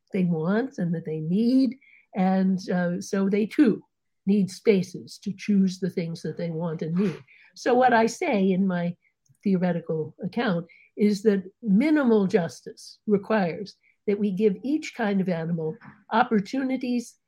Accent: American